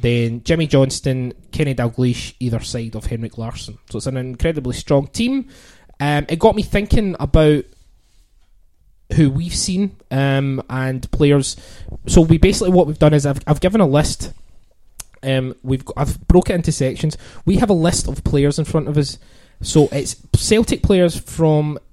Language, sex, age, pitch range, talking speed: English, male, 20-39, 120-160 Hz, 170 wpm